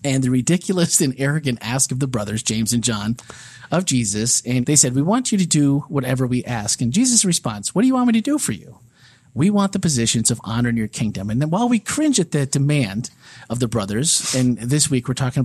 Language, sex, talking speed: English, male, 240 wpm